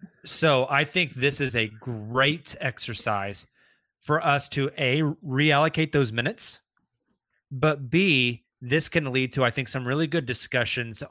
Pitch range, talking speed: 115-145 Hz, 145 wpm